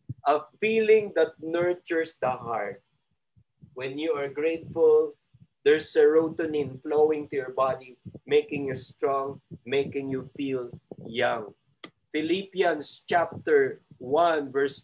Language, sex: Filipino, male